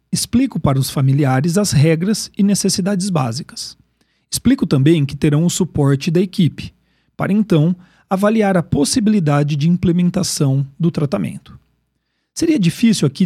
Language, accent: Portuguese, Brazilian